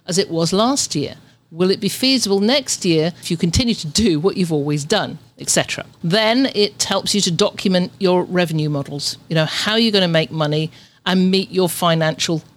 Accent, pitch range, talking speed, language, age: British, 150-195 Hz, 200 wpm, English, 50-69